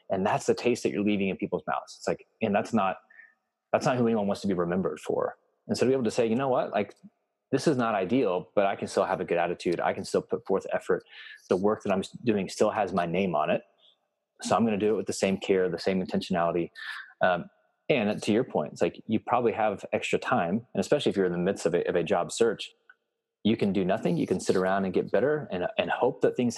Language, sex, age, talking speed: English, male, 30-49, 265 wpm